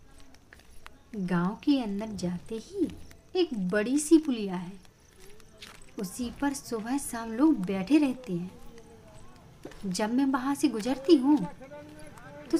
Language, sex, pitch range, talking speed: Hindi, female, 185-300 Hz, 120 wpm